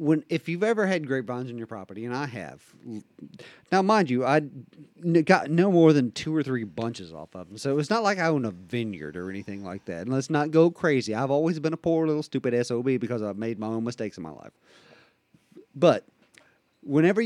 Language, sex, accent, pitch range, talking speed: English, male, American, 110-160 Hz, 220 wpm